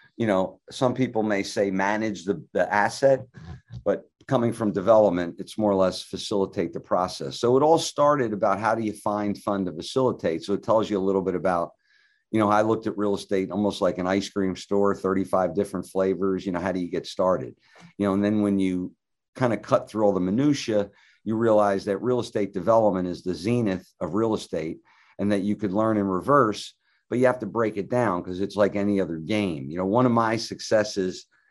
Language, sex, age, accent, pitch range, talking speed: English, male, 50-69, American, 95-115 Hz, 220 wpm